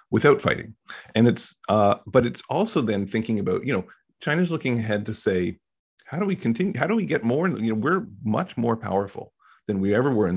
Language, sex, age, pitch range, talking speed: English, male, 40-59, 95-115 Hz, 220 wpm